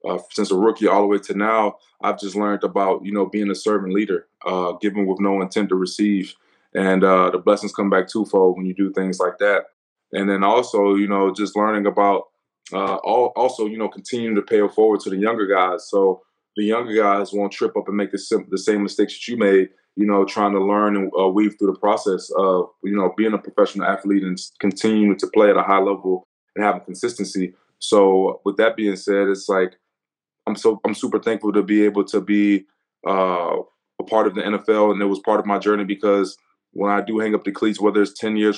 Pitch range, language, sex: 95-105 Hz, English, male